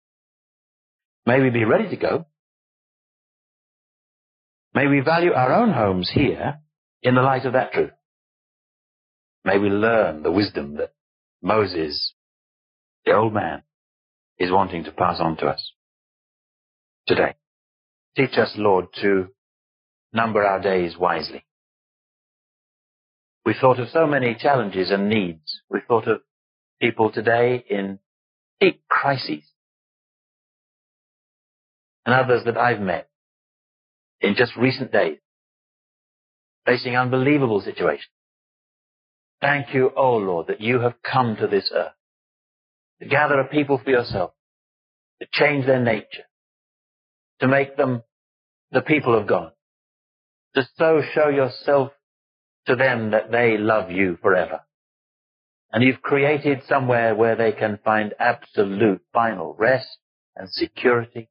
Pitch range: 100-135 Hz